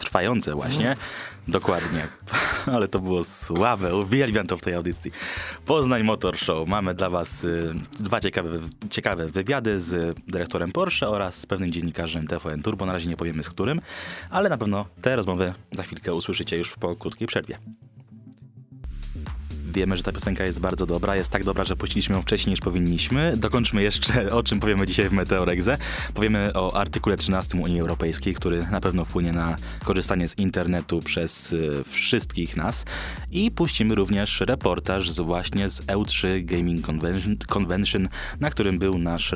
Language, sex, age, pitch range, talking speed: Polish, male, 20-39, 85-105 Hz, 155 wpm